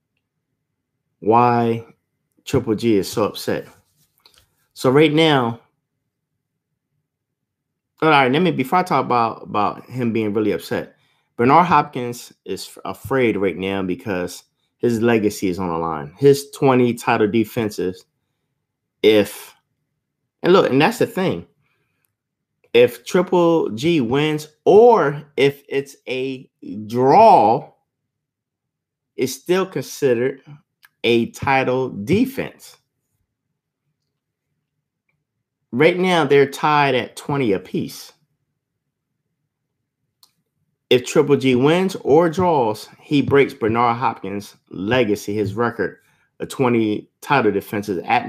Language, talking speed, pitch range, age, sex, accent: English, 105 wpm, 115-145 Hz, 30-49, male, American